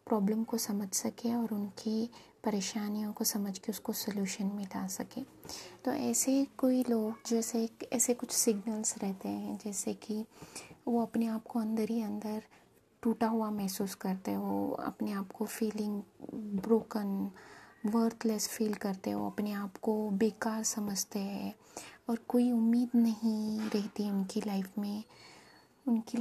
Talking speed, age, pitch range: 140 wpm, 20-39, 210-230 Hz